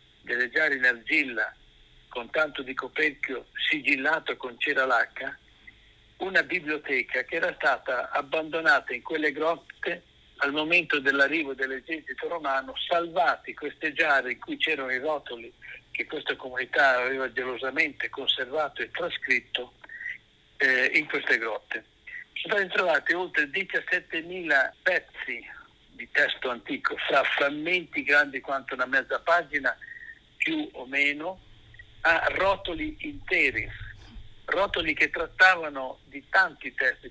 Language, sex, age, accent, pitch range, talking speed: Italian, male, 50-69, native, 135-185 Hz, 120 wpm